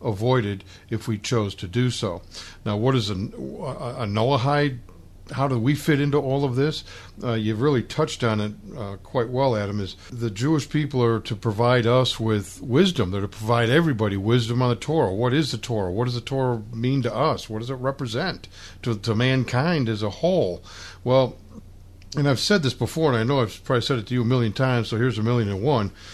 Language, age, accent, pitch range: English, 60-79, American, 110-145 Hz